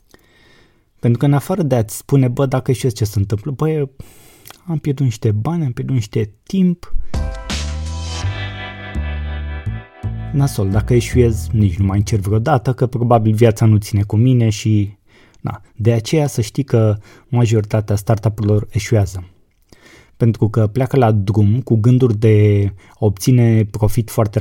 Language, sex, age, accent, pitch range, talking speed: Romanian, male, 20-39, native, 105-120 Hz, 145 wpm